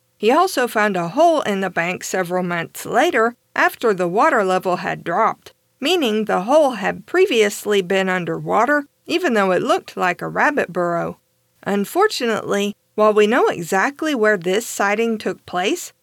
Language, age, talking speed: English, 50-69, 155 wpm